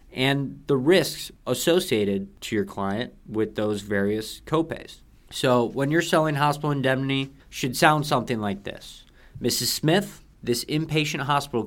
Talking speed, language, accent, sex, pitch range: 140 wpm, English, American, male, 110-140 Hz